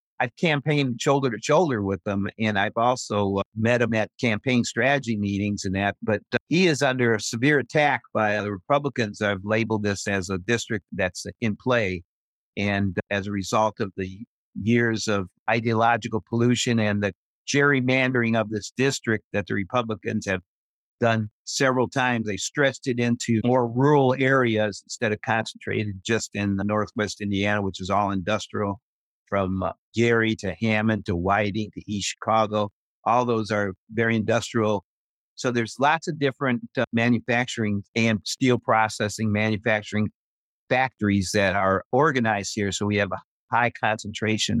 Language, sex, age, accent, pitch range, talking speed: English, male, 50-69, American, 100-120 Hz, 155 wpm